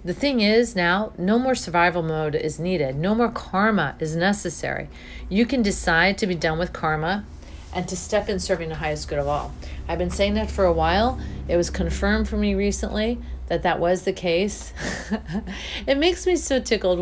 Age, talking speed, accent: 40-59, 195 wpm, American